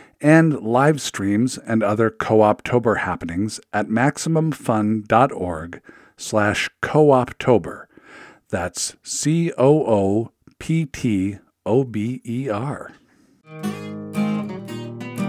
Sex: male